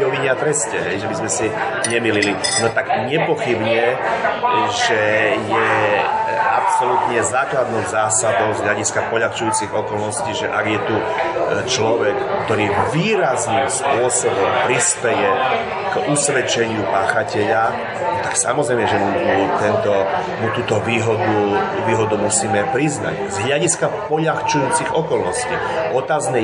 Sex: male